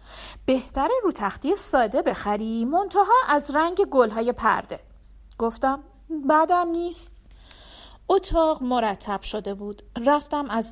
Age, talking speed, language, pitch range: 40-59, 105 wpm, Persian, 210-300 Hz